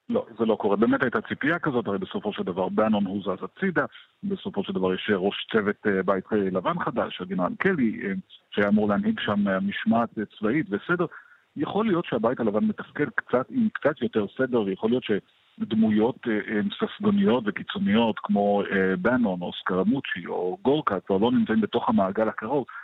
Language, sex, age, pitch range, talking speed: Hebrew, male, 50-69, 110-175 Hz, 155 wpm